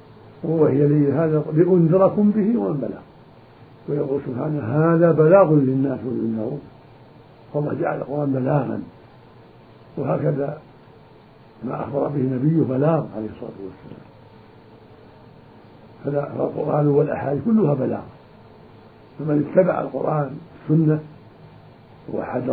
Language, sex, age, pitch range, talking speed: Arabic, male, 60-79, 115-150 Hz, 95 wpm